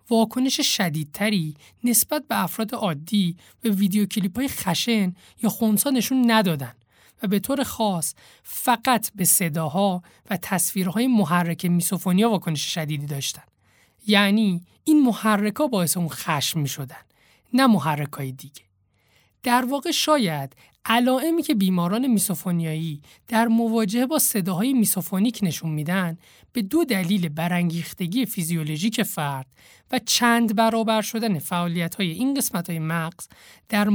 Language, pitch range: Persian, 160-230 Hz